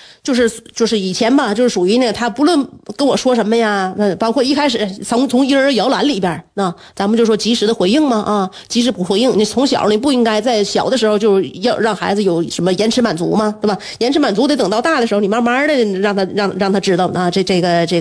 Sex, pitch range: female, 200-265 Hz